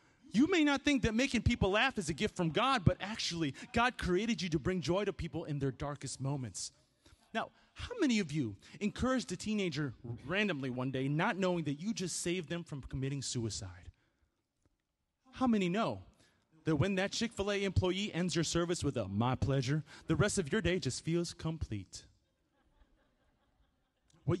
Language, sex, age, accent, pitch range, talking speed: English, male, 30-49, American, 155-240 Hz, 175 wpm